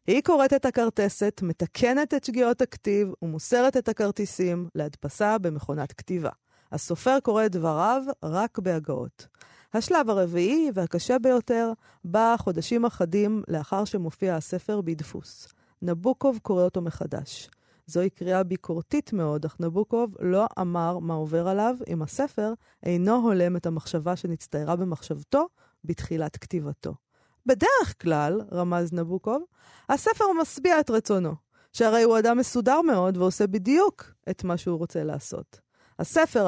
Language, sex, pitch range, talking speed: Hebrew, female, 170-230 Hz, 125 wpm